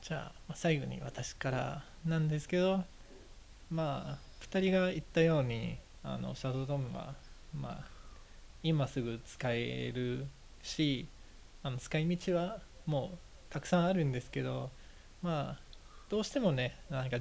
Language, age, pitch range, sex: Japanese, 20-39, 120-145 Hz, male